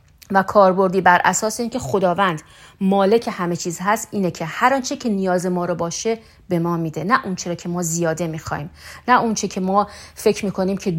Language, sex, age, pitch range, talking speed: Persian, female, 40-59, 175-220 Hz, 190 wpm